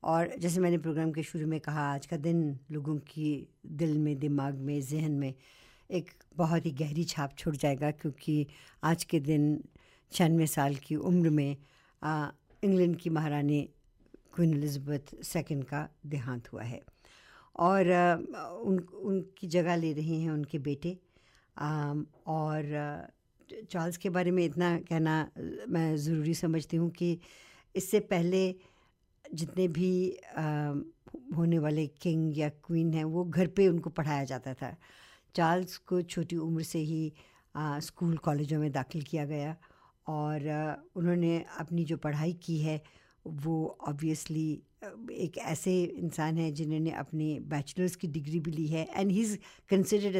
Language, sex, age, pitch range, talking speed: English, female, 60-79, 150-175 Hz, 140 wpm